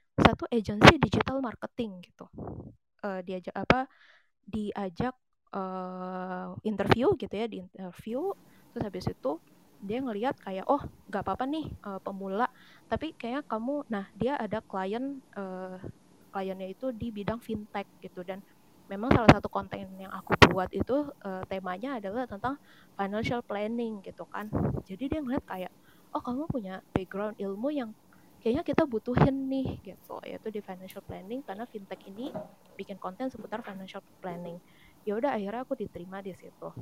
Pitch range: 190-245 Hz